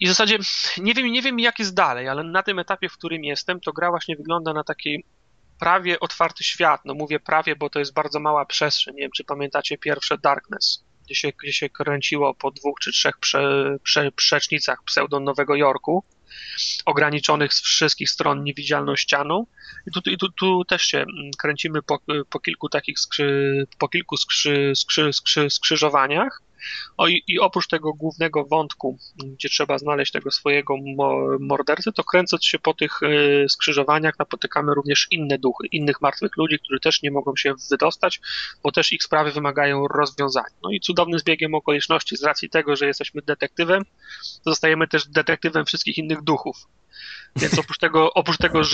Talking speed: 170 wpm